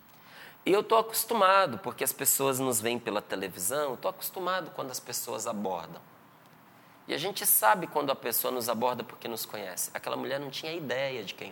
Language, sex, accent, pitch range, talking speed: Portuguese, male, Brazilian, 120-170 Hz, 190 wpm